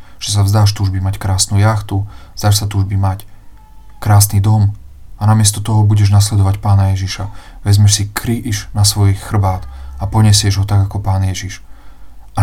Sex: male